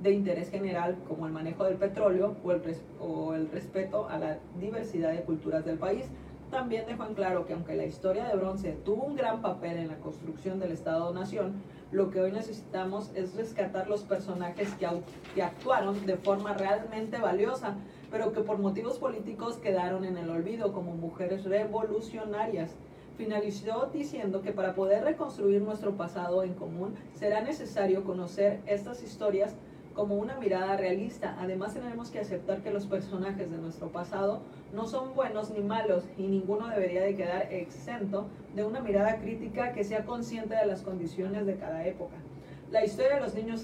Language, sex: Spanish, female